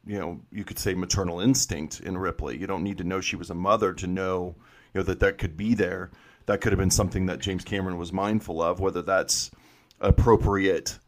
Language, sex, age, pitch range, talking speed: English, male, 40-59, 95-115 Hz, 220 wpm